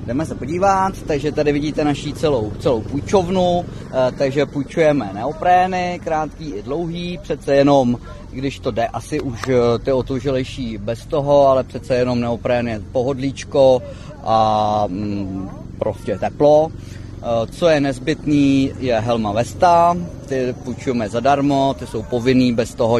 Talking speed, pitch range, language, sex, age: 130 wpm, 110-135 Hz, Czech, male, 30-49